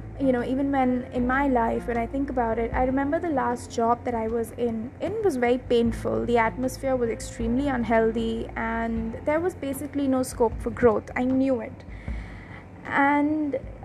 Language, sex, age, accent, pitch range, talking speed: English, female, 20-39, Indian, 225-260 Hz, 180 wpm